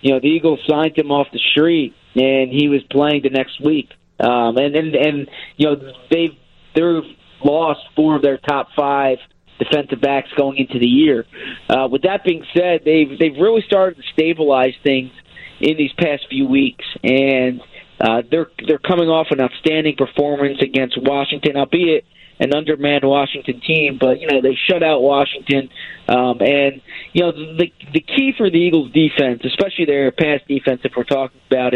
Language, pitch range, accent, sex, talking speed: English, 135-155 Hz, American, male, 180 wpm